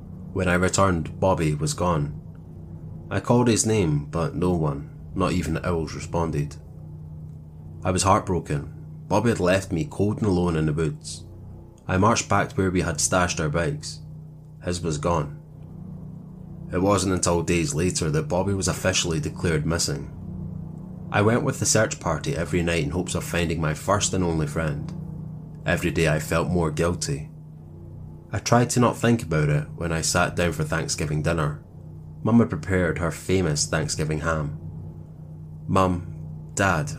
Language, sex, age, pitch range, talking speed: English, male, 20-39, 80-100 Hz, 165 wpm